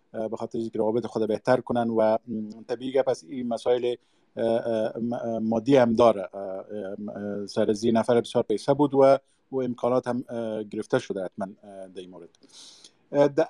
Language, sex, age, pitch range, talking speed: Persian, male, 50-69, 115-140 Hz, 125 wpm